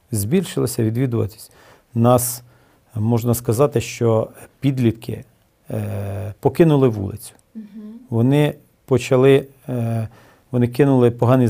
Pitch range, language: 105-125 Hz, Russian